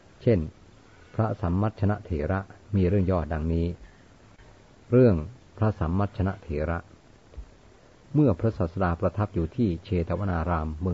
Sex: male